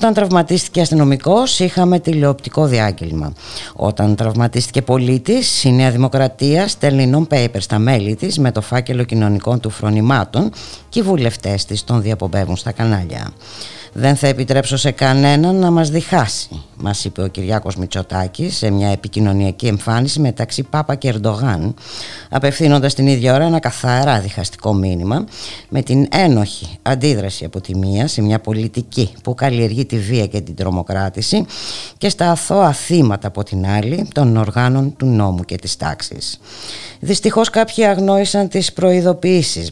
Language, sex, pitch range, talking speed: Greek, female, 105-145 Hz, 150 wpm